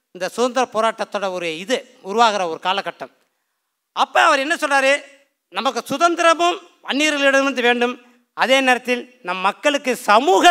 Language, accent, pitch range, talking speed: Tamil, native, 205-275 Hz, 120 wpm